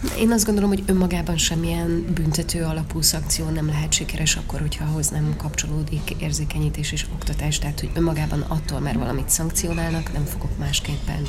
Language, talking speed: Hungarian, 160 wpm